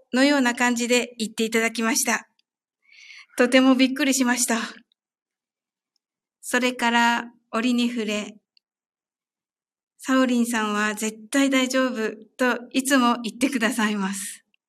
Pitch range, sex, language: 220-260 Hz, female, Japanese